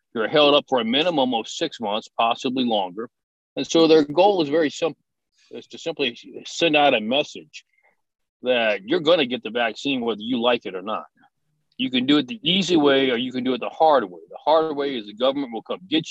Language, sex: English, male